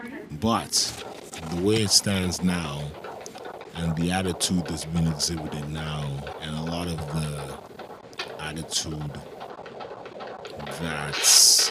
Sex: male